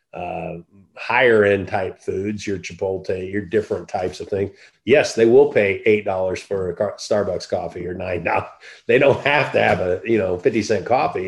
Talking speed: 185 wpm